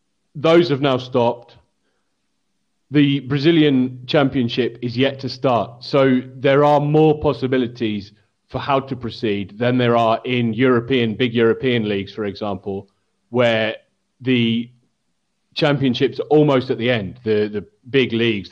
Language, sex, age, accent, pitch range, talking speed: English, male, 30-49, British, 110-130 Hz, 135 wpm